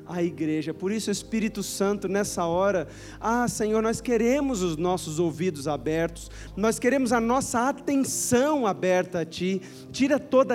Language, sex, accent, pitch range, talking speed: Portuguese, male, Brazilian, 190-245 Hz, 155 wpm